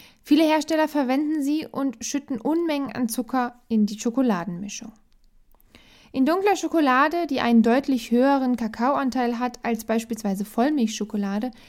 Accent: German